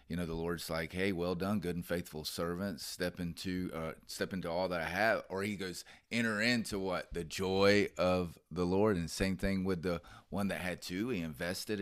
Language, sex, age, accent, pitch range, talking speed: English, male, 30-49, American, 90-115 Hz, 220 wpm